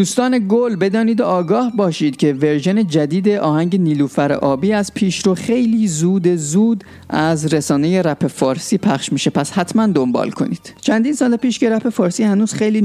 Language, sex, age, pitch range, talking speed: Persian, male, 30-49, 135-195 Hz, 165 wpm